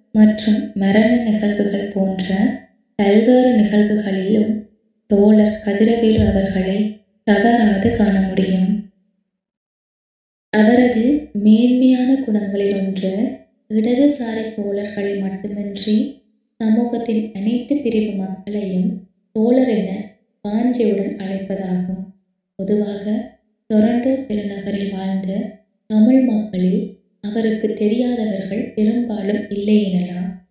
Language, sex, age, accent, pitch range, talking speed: Tamil, female, 20-39, native, 200-230 Hz, 75 wpm